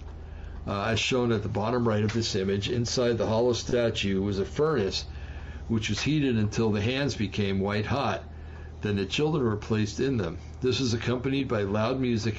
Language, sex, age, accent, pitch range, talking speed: English, male, 60-79, American, 80-115 Hz, 190 wpm